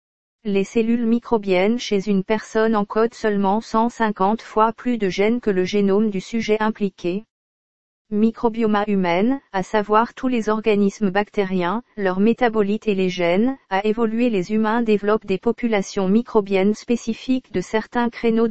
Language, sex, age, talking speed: Spanish, female, 40-59, 145 wpm